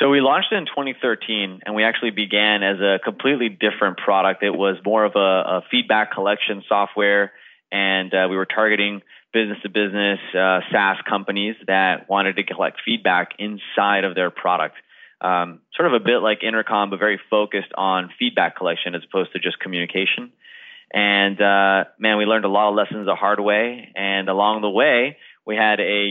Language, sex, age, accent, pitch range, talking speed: English, male, 20-39, American, 100-115 Hz, 180 wpm